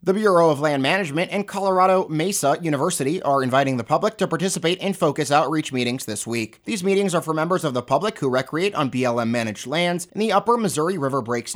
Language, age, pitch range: English, 30-49, 135-190 Hz